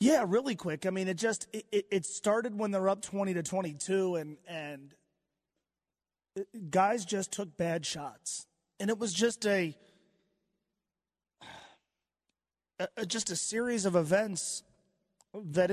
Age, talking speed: 30-49, 135 wpm